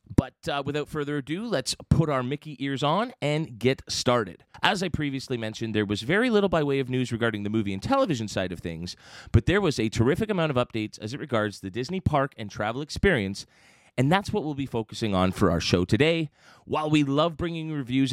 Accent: American